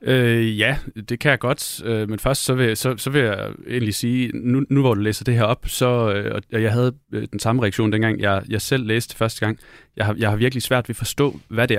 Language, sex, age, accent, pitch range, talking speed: Danish, male, 30-49, native, 100-120 Hz, 265 wpm